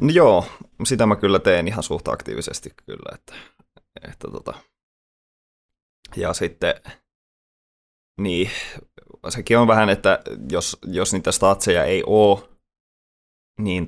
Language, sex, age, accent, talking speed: Finnish, male, 20-39, native, 115 wpm